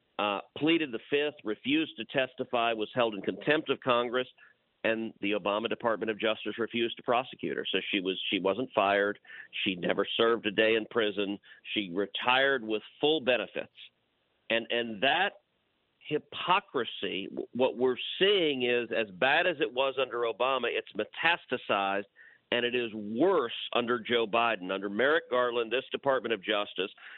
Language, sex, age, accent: English, male, 50-69, American